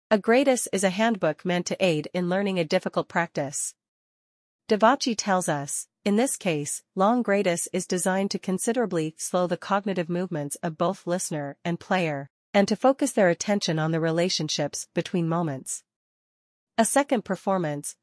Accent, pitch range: American, 160-200 Hz